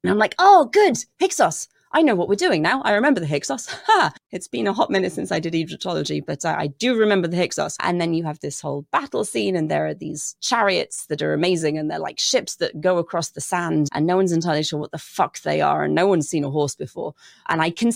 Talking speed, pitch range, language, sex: 260 wpm, 145-185 Hz, English, female